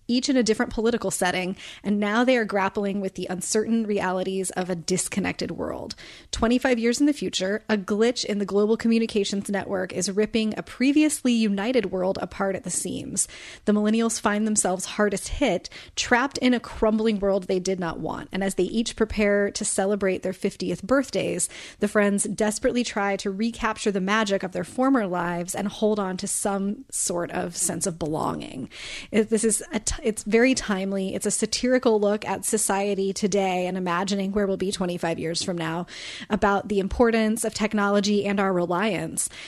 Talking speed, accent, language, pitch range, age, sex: 180 wpm, American, English, 190-225 Hz, 30-49, female